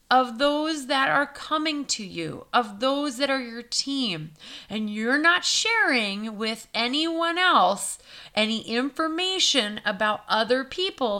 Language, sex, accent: English, female, American